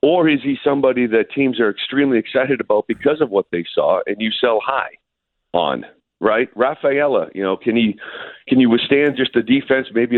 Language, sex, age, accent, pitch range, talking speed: English, male, 40-59, American, 110-150 Hz, 195 wpm